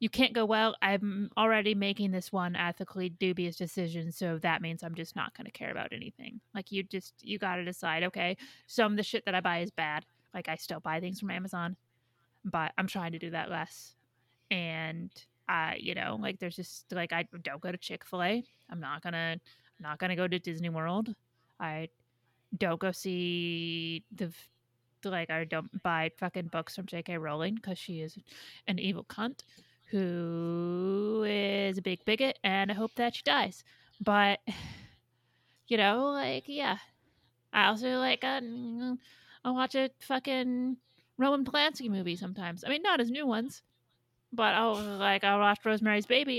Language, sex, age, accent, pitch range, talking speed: English, female, 30-49, American, 165-220 Hz, 185 wpm